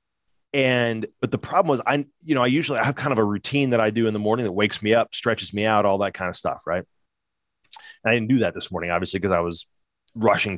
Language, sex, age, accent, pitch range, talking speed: English, male, 30-49, American, 100-130 Hz, 260 wpm